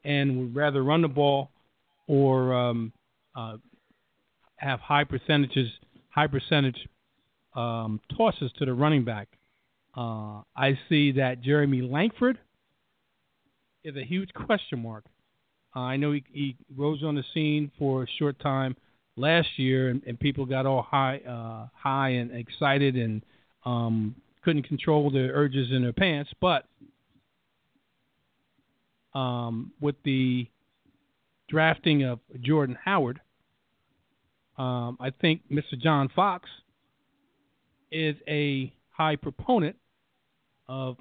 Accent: American